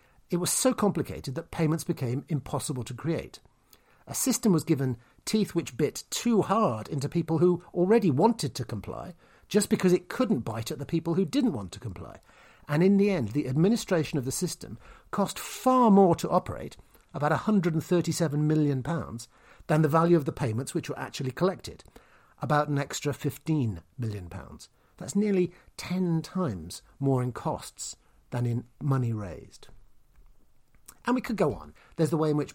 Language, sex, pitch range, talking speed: English, male, 130-190 Hz, 170 wpm